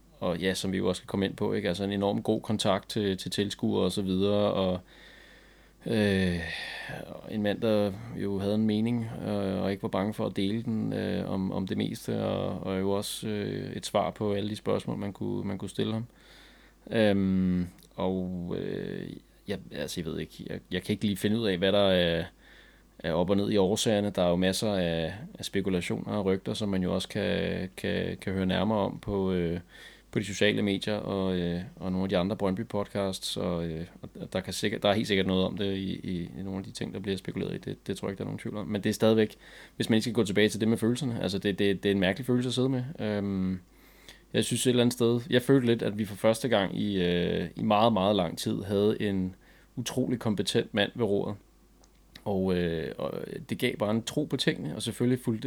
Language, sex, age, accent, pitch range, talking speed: Danish, male, 20-39, native, 95-110 Hz, 240 wpm